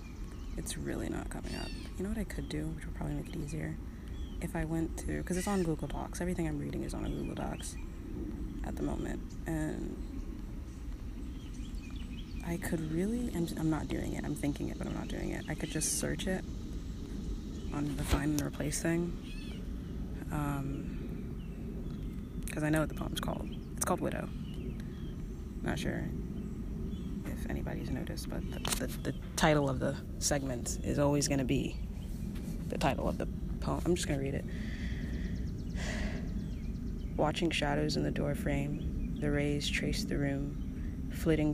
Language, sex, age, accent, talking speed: English, female, 20-39, American, 165 wpm